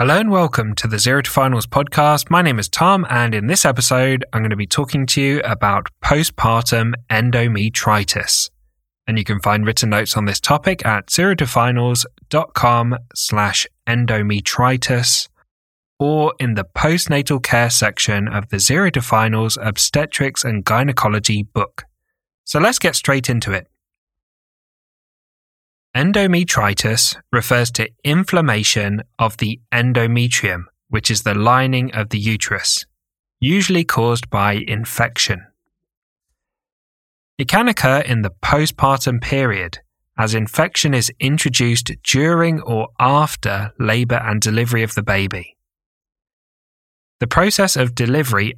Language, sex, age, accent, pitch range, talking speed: English, male, 10-29, British, 105-140 Hz, 125 wpm